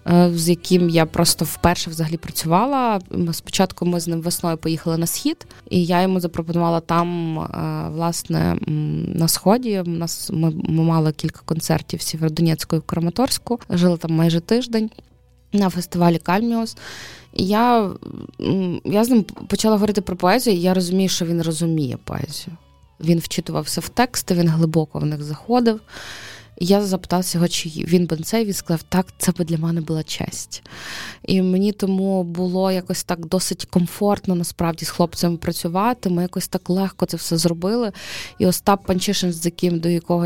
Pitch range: 165-190 Hz